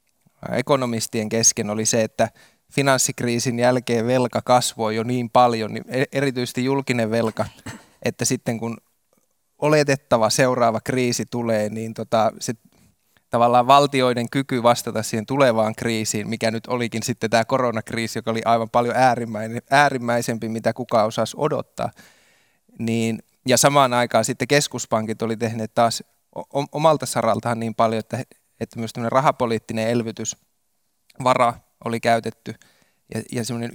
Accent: native